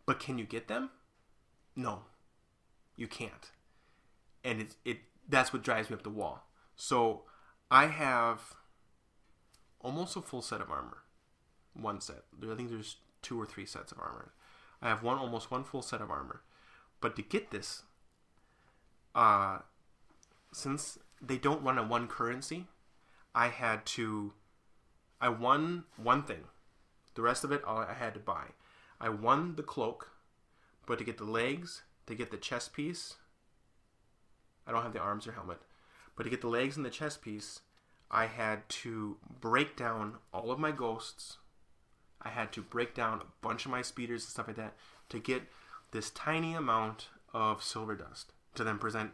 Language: English